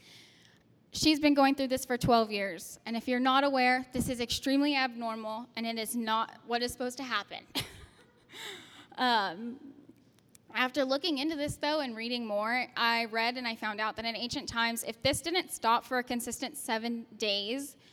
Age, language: 10-29, English